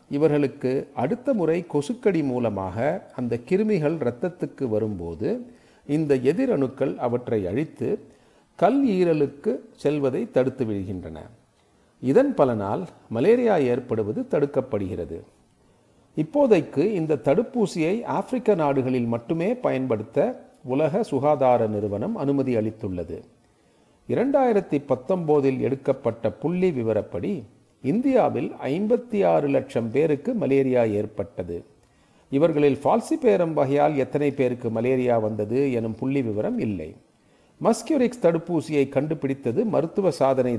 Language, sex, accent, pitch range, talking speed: Tamil, male, native, 125-180 Hz, 90 wpm